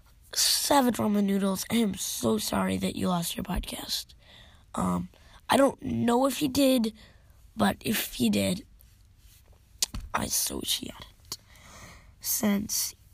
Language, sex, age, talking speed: English, female, 20-39, 125 wpm